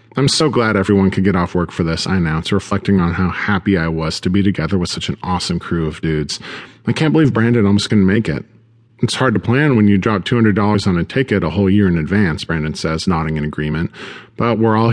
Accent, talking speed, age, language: American, 240 wpm, 40-59, English